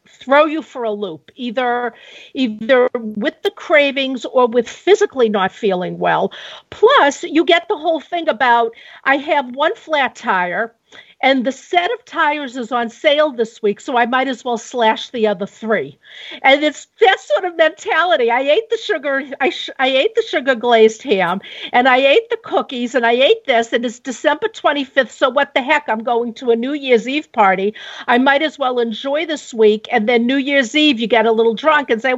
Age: 50-69